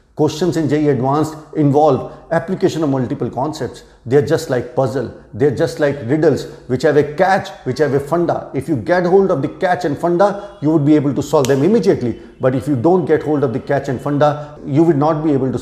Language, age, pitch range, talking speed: Hindi, 70-89, 135-170 Hz, 235 wpm